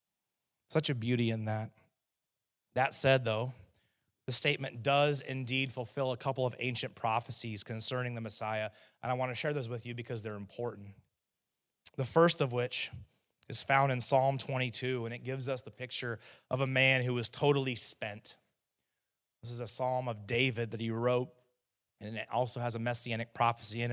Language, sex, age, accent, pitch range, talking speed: English, male, 30-49, American, 115-135 Hz, 180 wpm